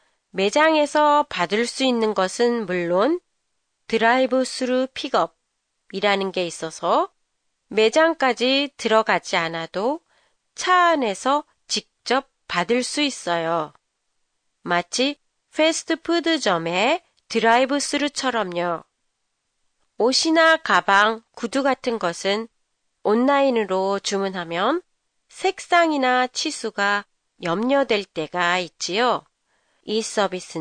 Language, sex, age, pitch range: Japanese, female, 30-49, 190-280 Hz